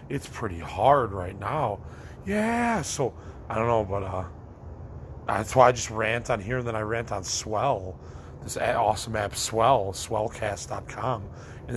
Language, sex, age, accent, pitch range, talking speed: English, male, 30-49, American, 85-115 Hz, 160 wpm